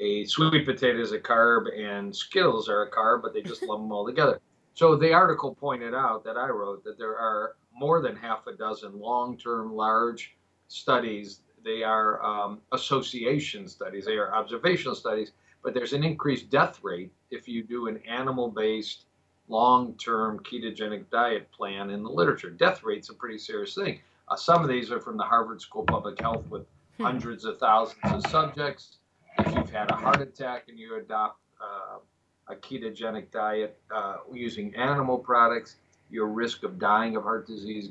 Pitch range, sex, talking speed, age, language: 110-145 Hz, male, 175 wpm, 50-69, English